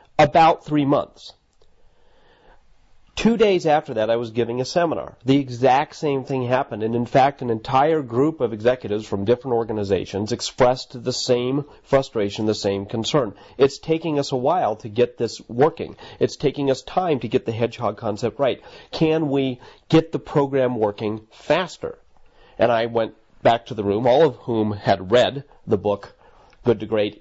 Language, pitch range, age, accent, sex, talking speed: English, 110-150 Hz, 40-59, American, male, 170 wpm